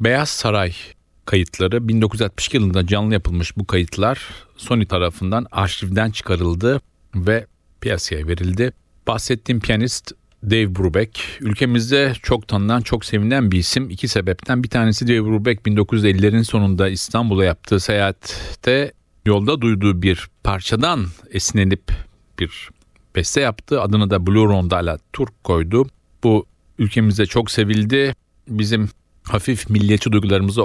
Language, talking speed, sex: Turkish, 115 wpm, male